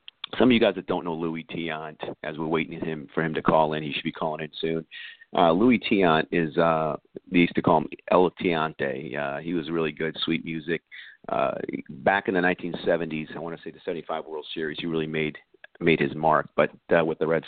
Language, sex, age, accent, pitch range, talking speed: English, male, 50-69, American, 80-85 Hz, 225 wpm